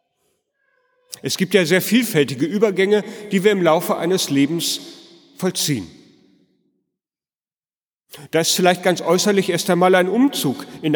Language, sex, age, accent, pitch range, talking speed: German, male, 40-59, German, 150-190 Hz, 125 wpm